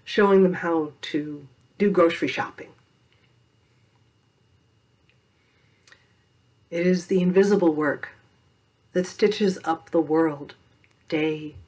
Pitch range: 120-175 Hz